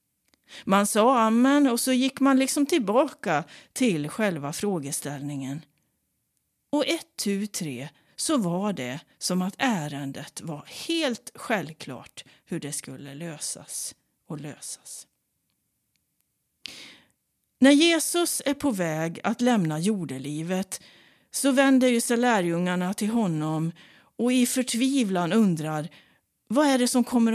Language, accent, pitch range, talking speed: Swedish, native, 165-260 Hz, 120 wpm